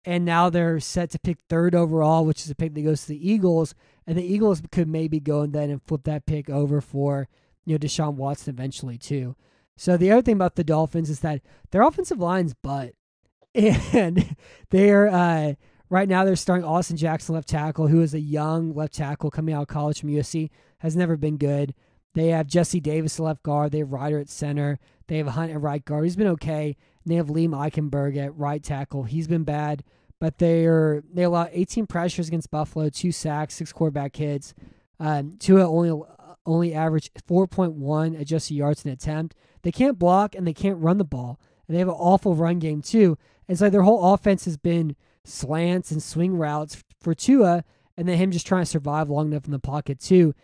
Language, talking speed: English, 210 wpm